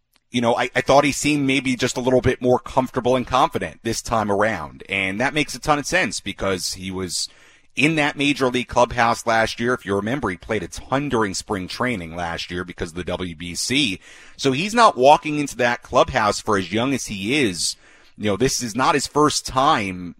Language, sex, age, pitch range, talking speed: English, male, 30-49, 90-125 Hz, 215 wpm